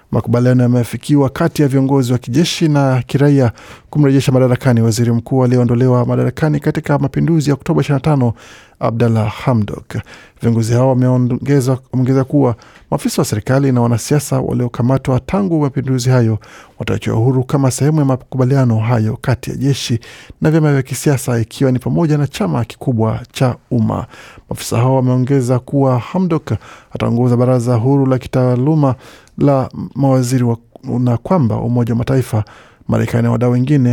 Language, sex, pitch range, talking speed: Swahili, male, 120-140 Hz, 135 wpm